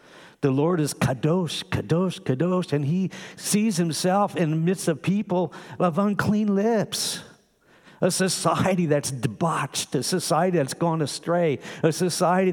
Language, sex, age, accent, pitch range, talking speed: English, male, 50-69, American, 105-160 Hz, 140 wpm